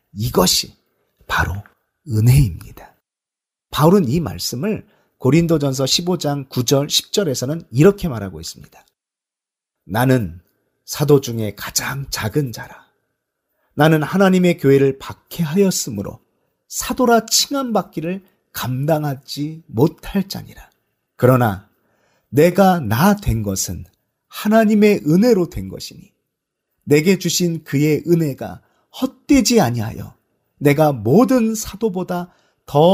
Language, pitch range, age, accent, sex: Korean, 110-180 Hz, 40-59, native, male